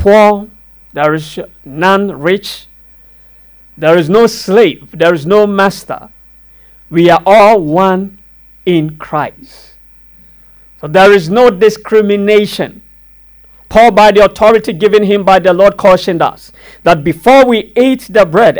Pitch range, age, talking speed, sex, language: 180-215 Hz, 50-69, 130 wpm, male, English